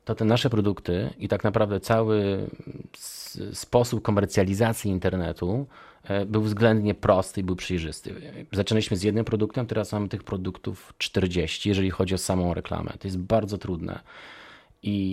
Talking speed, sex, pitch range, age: 145 wpm, male, 95-110 Hz, 30-49